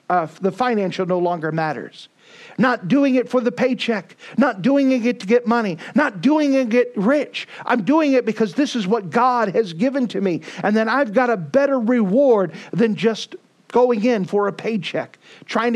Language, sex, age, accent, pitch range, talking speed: English, male, 50-69, American, 180-245 Hz, 195 wpm